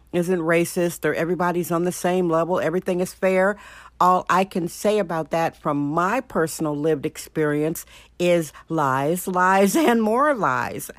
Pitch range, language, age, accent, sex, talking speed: 165-210 Hz, English, 60-79, American, female, 155 wpm